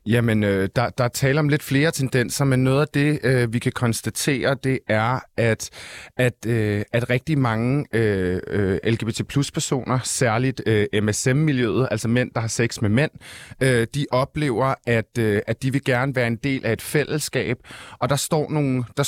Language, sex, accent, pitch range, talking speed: Danish, male, native, 115-135 Hz, 180 wpm